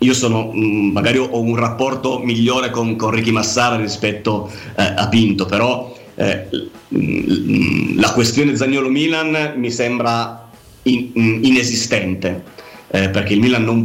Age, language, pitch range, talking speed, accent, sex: 30-49, Italian, 105-125 Hz, 135 wpm, native, male